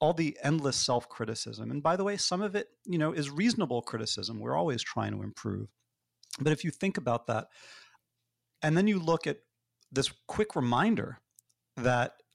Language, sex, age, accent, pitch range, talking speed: English, male, 40-59, American, 115-140 Hz, 175 wpm